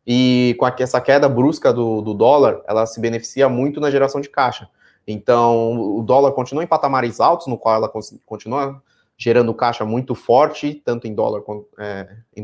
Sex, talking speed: male, 175 wpm